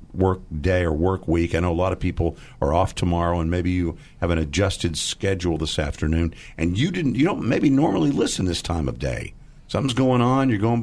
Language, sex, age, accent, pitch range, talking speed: English, male, 50-69, American, 85-115 Hz, 220 wpm